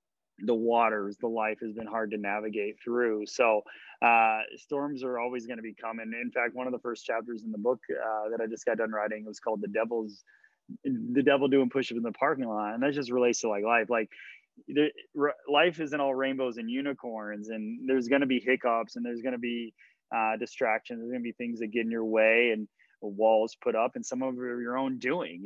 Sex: male